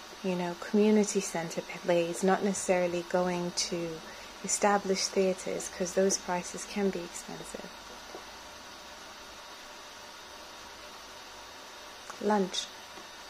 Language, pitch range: English, 180-195 Hz